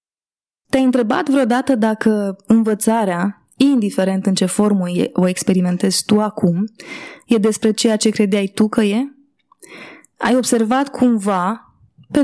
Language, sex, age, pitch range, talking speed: Romanian, female, 20-39, 200-235 Hz, 125 wpm